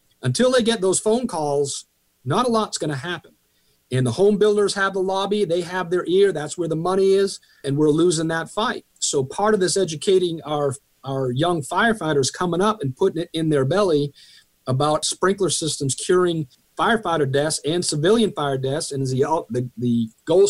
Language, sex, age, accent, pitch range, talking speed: English, male, 40-59, American, 140-195 Hz, 190 wpm